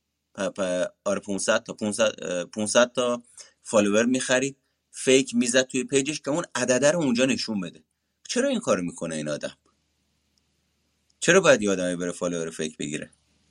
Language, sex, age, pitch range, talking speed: Persian, male, 30-49, 85-130 Hz, 150 wpm